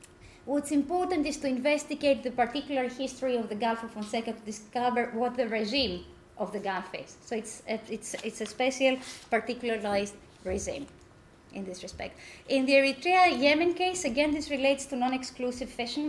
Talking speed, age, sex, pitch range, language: 155 wpm, 20-39, female, 225-280 Hz, English